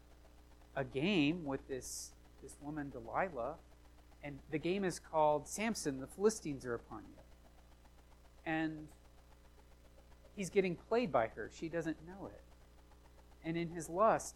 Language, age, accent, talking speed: English, 30-49, American, 135 wpm